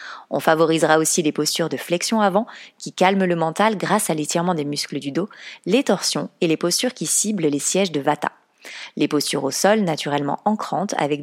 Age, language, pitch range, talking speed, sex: 30-49, French, 165-205 Hz, 200 wpm, female